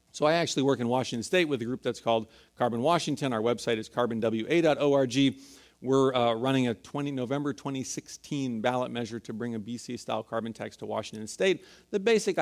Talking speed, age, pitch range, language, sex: 180 wpm, 40-59, 120-150 Hz, English, male